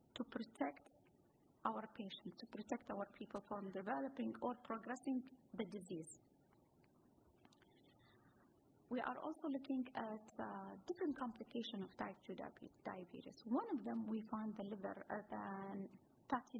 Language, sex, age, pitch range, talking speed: English, female, 30-49, 215-290 Hz, 120 wpm